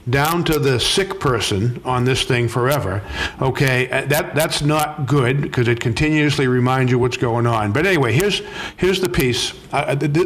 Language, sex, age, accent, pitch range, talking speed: English, male, 50-69, American, 125-155 Hz, 175 wpm